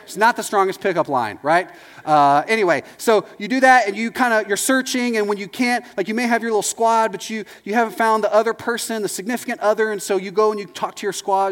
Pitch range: 150-215 Hz